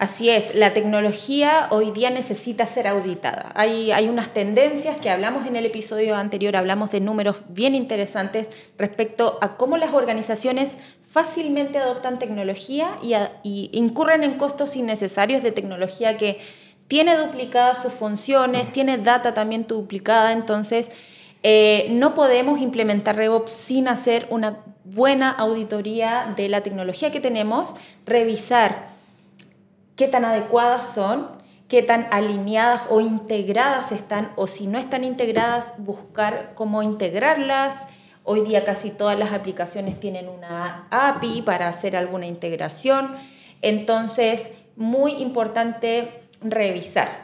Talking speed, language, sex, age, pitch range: 130 wpm, Spanish, female, 20-39, 205-250 Hz